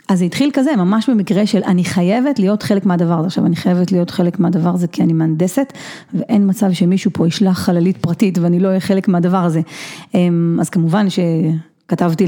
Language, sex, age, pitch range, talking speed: Hebrew, female, 30-49, 175-220 Hz, 190 wpm